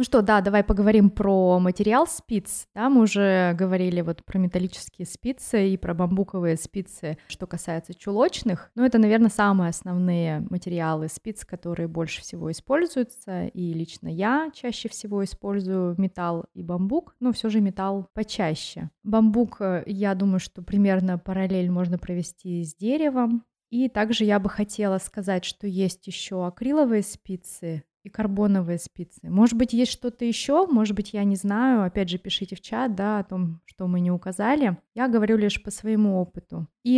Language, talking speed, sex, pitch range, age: Russian, 165 wpm, female, 180-220 Hz, 20-39